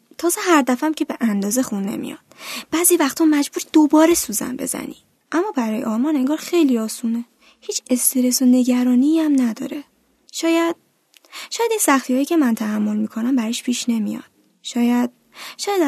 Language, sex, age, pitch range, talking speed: Persian, female, 10-29, 225-300 Hz, 145 wpm